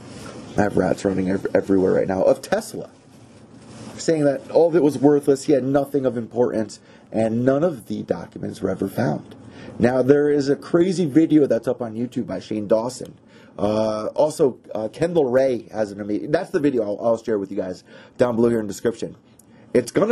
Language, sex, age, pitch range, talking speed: English, male, 30-49, 105-145 Hz, 200 wpm